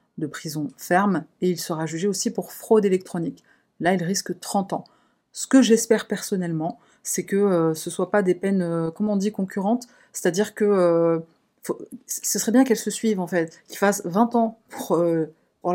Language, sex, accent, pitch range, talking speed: French, female, French, 165-205 Hz, 200 wpm